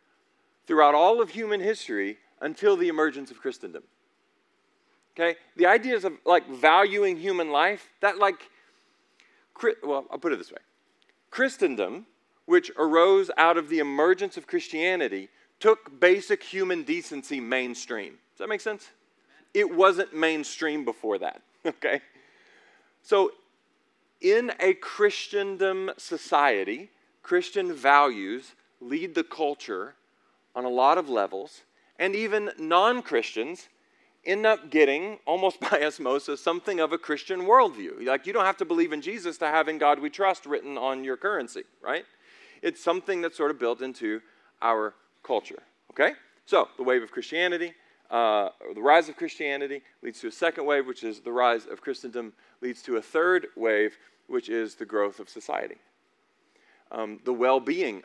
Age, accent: 40-59, American